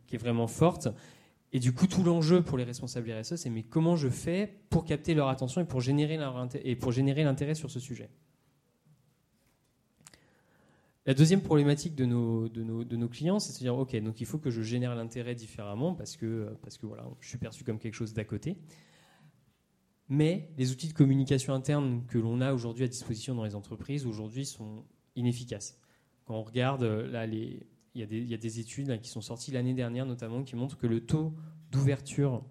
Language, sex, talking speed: French, male, 210 wpm